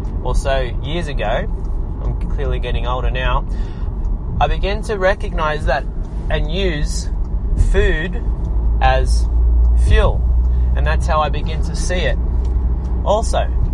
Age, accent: 20-39, Australian